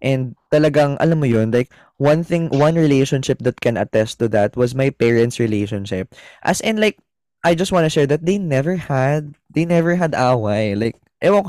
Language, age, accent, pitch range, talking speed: Filipino, 20-39, native, 120-180 Hz, 190 wpm